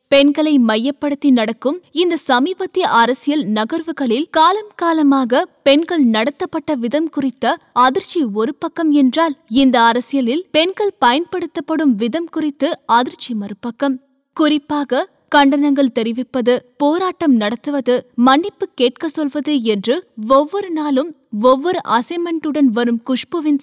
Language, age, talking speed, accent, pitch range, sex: Tamil, 20-39, 100 wpm, native, 250-325 Hz, female